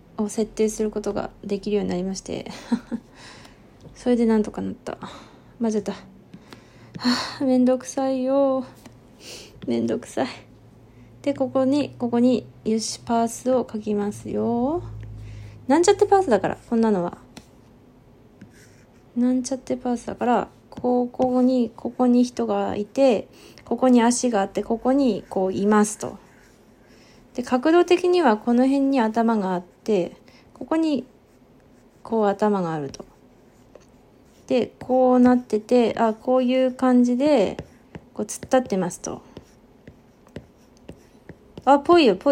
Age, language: 20-39, Japanese